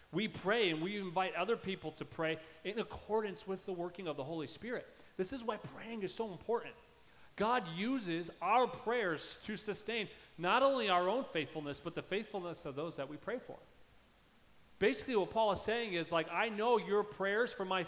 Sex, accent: male, American